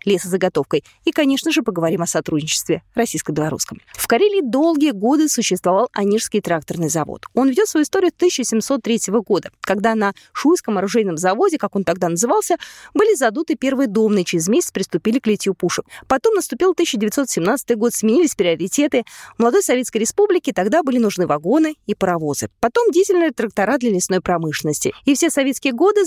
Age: 20-39